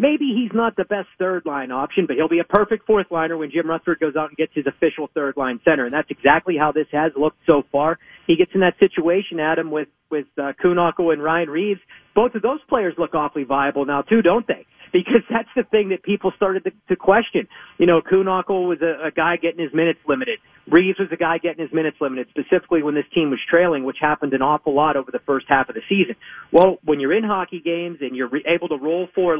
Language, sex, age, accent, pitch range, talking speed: English, male, 40-59, American, 150-180 Hz, 235 wpm